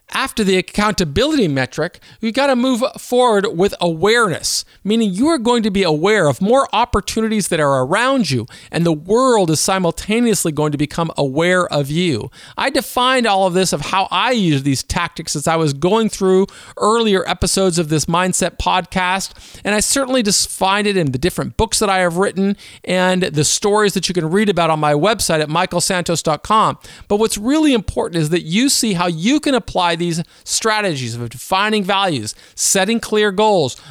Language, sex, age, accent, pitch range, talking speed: English, male, 50-69, American, 170-220 Hz, 185 wpm